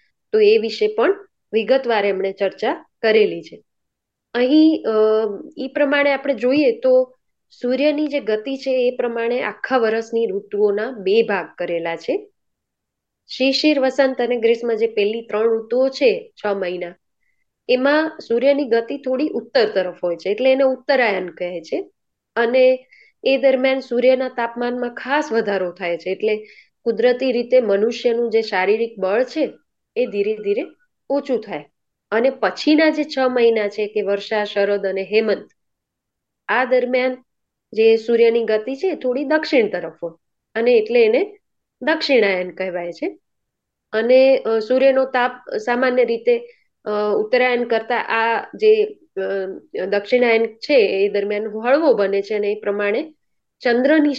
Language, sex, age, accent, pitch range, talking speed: Gujarati, female, 20-39, native, 210-280 Hz, 115 wpm